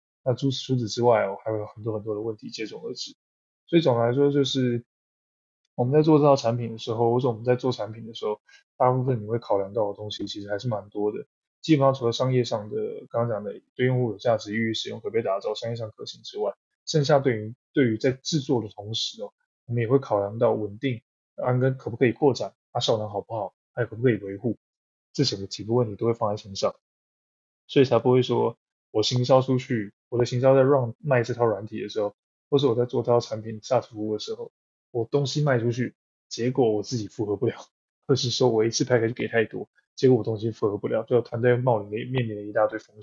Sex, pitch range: male, 110-130 Hz